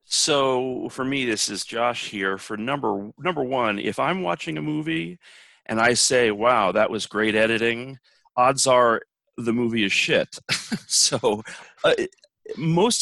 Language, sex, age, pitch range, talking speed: English, male, 40-59, 105-135 Hz, 150 wpm